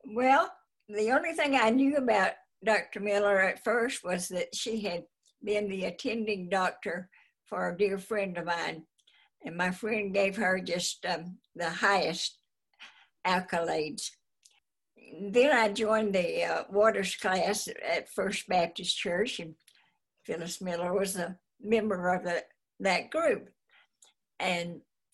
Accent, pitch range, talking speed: American, 180-215 Hz, 135 wpm